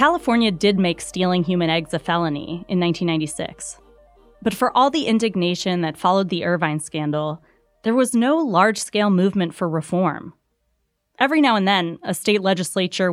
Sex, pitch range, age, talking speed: female, 165-210 Hz, 20-39, 155 wpm